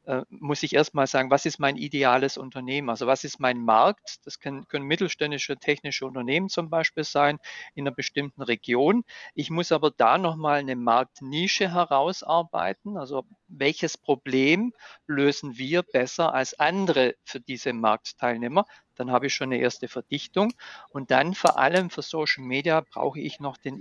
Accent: German